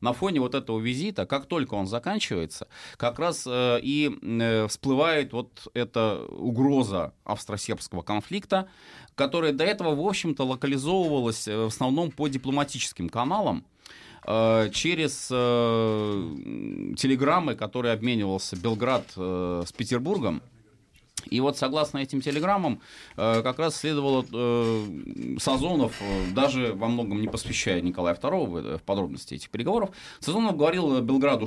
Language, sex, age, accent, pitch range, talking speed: Russian, male, 30-49, native, 100-140 Hz, 120 wpm